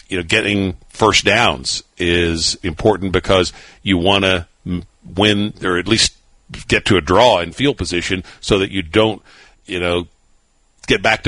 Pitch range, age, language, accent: 85-105 Hz, 50-69, English, American